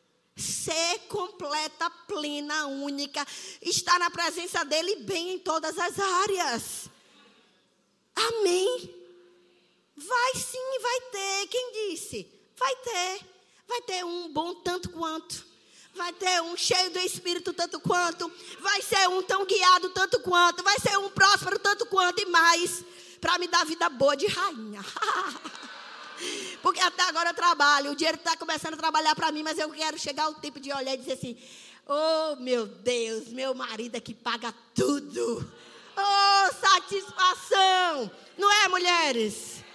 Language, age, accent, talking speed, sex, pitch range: Portuguese, 20-39, Brazilian, 145 wpm, female, 300-380 Hz